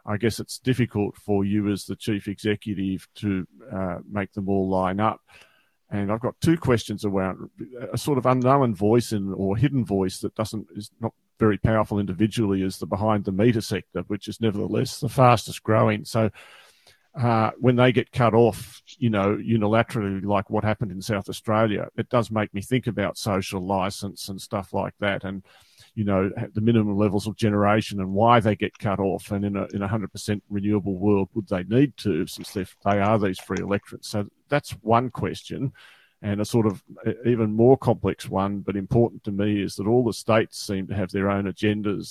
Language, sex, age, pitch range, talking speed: English, male, 40-59, 100-115 Hz, 195 wpm